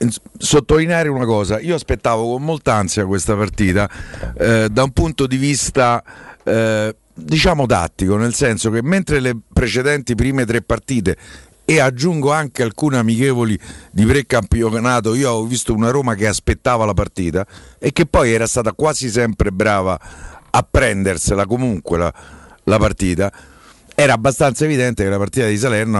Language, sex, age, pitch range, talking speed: Italian, male, 50-69, 95-120 Hz, 150 wpm